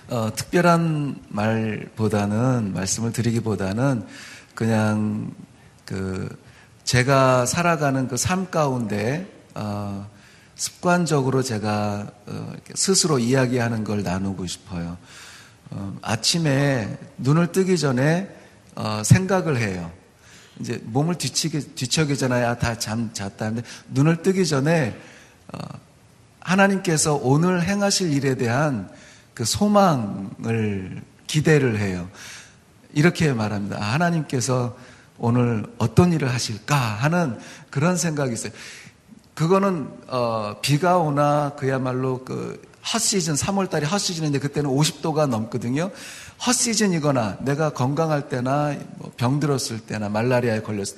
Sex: male